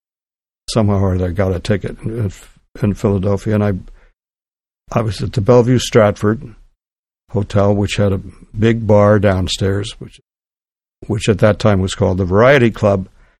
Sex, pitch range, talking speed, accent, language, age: male, 100-115 Hz, 145 wpm, American, English, 60-79